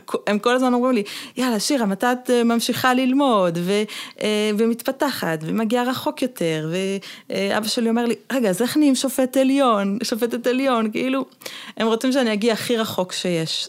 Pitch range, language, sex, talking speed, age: 190-250 Hz, Hebrew, female, 155 wpm, 30-49